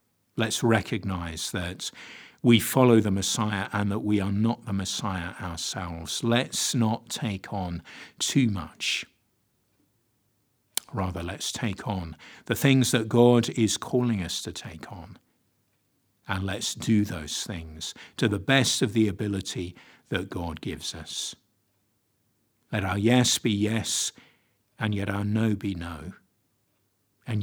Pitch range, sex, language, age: 95-115 Hz, male, English, 50-69